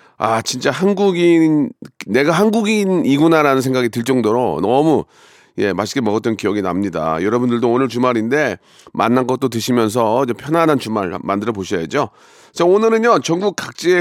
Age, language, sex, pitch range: 40-59, Korean, male, 120-170 Hz